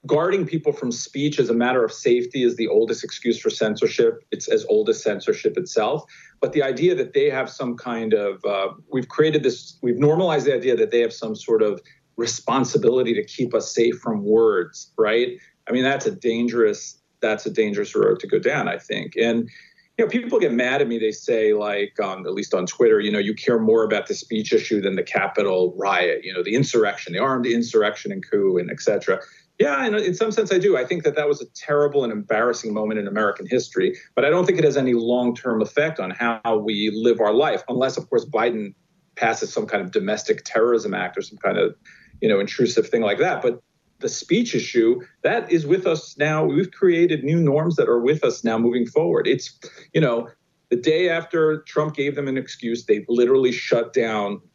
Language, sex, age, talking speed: English, male, 40-59, 220 wpm